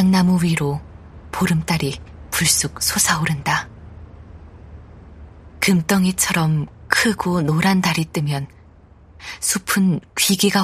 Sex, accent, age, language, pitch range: female, native, 20-39, Korean, 145-185 Hz